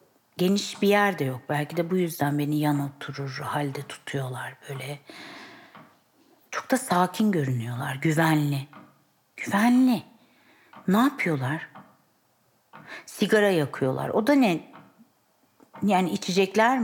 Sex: female